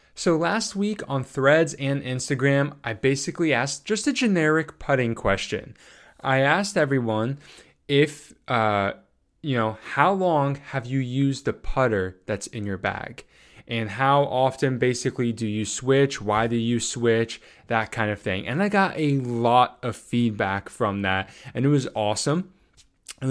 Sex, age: male, 20-39